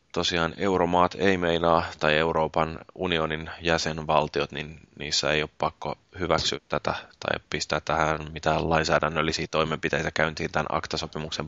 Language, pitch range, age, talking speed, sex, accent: Finnish, 80-90 Hz, 20-39, 125 wpm, male, native